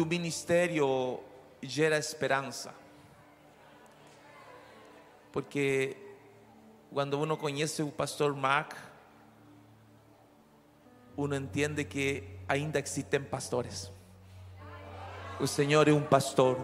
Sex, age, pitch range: male, 40-59, 100-150 Hz